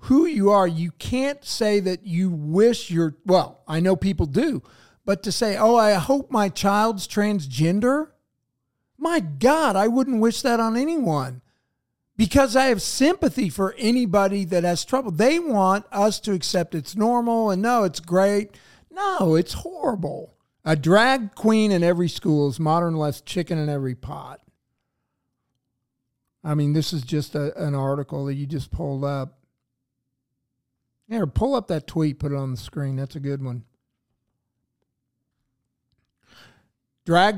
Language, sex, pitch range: English, male, 145-220 Hz